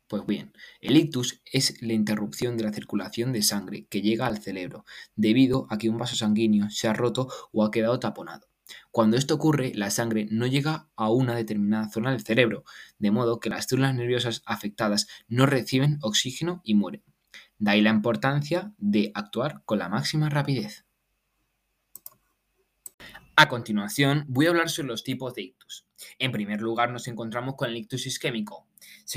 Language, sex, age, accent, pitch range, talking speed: Spanish, male, 20-39, Spanish, 110-130 Hz, 175 wpm